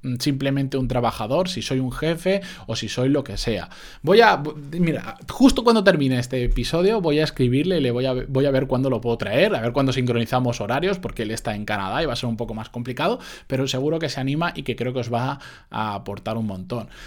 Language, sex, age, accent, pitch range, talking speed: Spanish, male, 20-39, Spanish, 115-165 Hz, 240 wpm